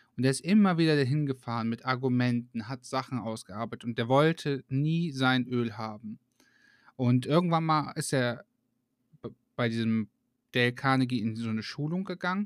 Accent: German